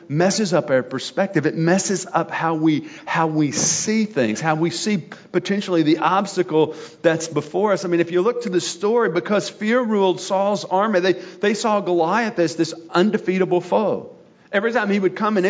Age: 40-59